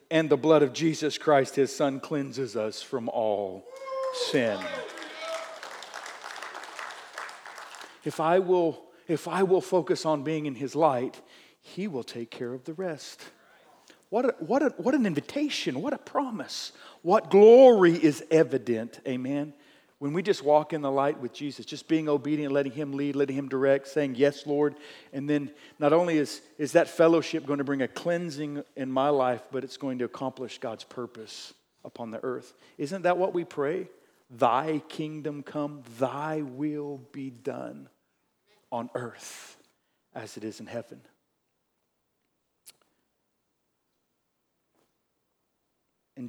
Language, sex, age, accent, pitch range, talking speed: English, male, 40-59, American, 130-160 Hz, 150 wpm